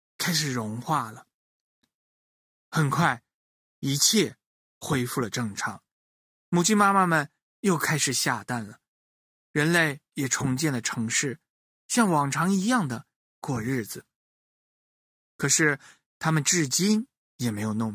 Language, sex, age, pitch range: Chinese, male, 20-39, 115-170 Hz